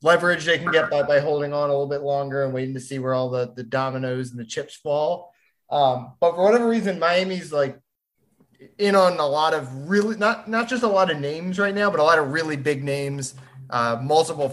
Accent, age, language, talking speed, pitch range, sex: American, 20-39, English, 225 wpm, 130-170 Hz, male